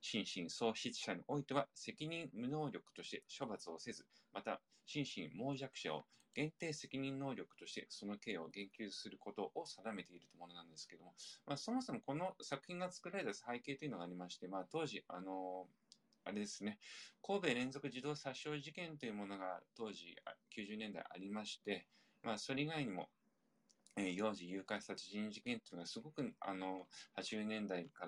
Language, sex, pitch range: Japanese, male, 100-165 Hz